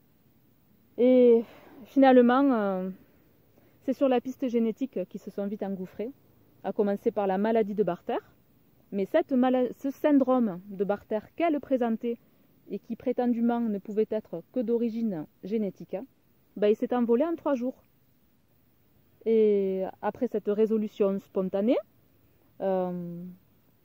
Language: French